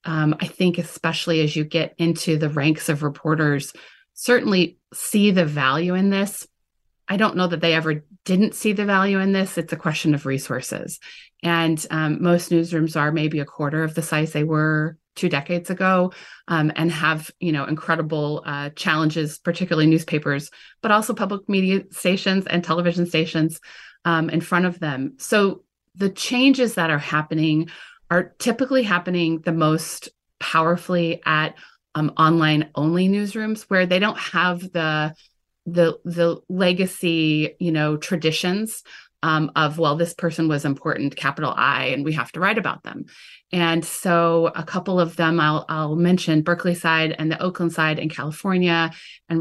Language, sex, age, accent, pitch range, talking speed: English, female, 30-49, American, 155-180 Hz, 165 wpm